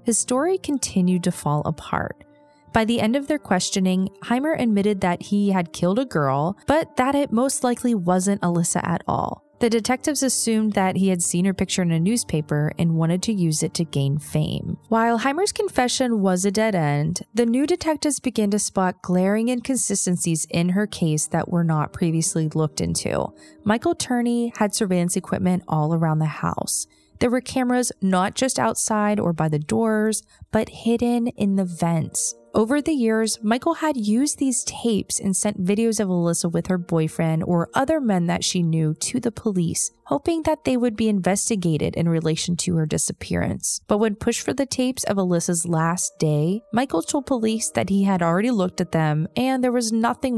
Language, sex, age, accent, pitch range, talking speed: English, female, 20-39, American, 175-240 Hz, 185 wpm